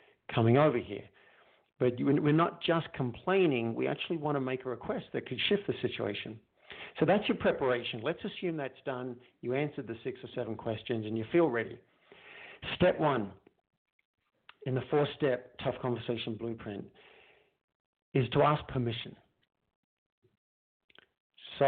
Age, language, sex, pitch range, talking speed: 50-69, English, male, 115-150 Hz, 145 wpm